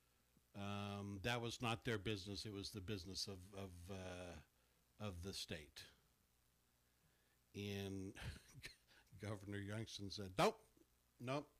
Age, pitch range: 60-79, 100-125 Hz